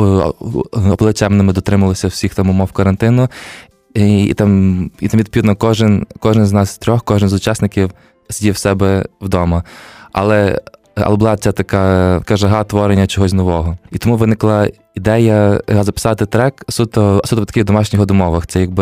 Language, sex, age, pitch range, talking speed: Ukrainian, male, 20-39, 95-110 Hz, 145 wpm